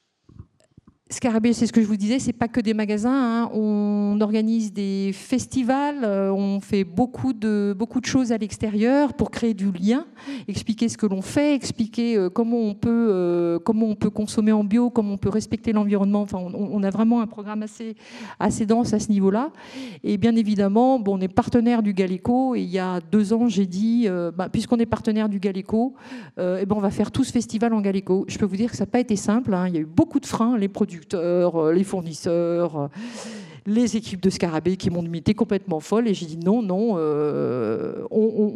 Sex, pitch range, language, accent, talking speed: female, 190-230 Hz, French, French, 215 wpm